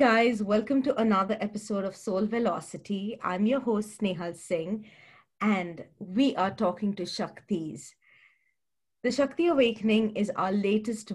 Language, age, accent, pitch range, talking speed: English, 30-49, Indian, 180-230 Hz, 140 wpm